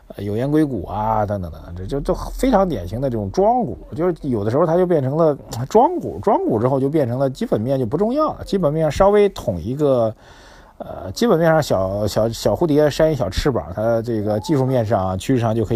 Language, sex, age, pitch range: Chinese, male, 50-69, 100-135 Hz